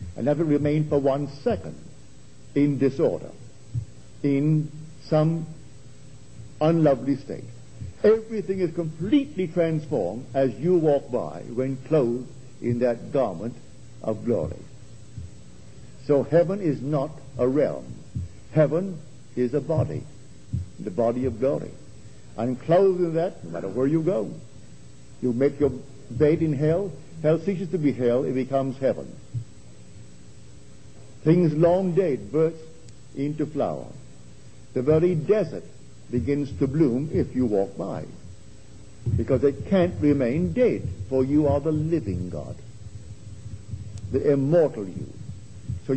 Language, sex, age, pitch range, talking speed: English, male, 60-79, 120-155 Hz, 125 wpm